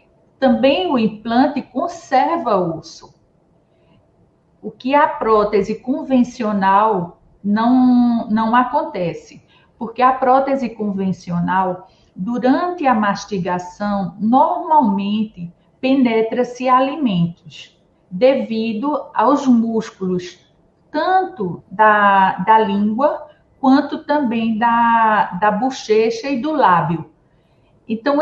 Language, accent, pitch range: Portuguese, Brazilian, 195-255 Hz